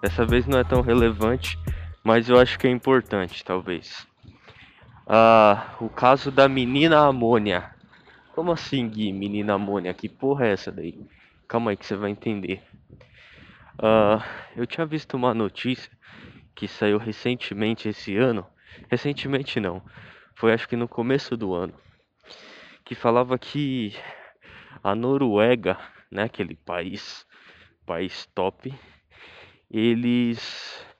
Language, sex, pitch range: Portuguese, male, 105-130 Hz